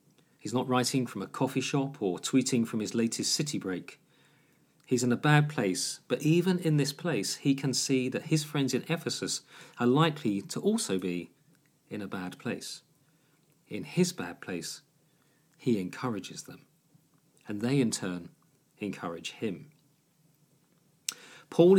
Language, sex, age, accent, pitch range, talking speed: English, male, 40-59, British, 115-155 Hz, 150 wpm